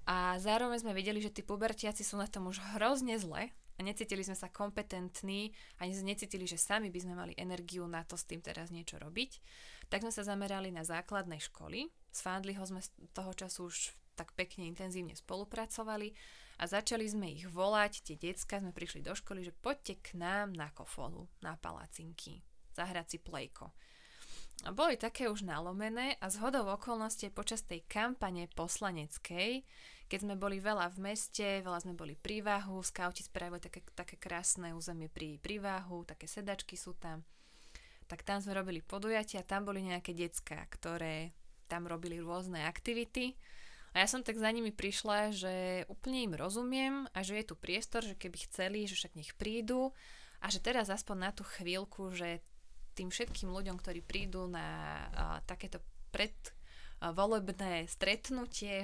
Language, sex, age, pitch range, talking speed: Slovak, female, 20-39, 175-215 Hz, 165 wpm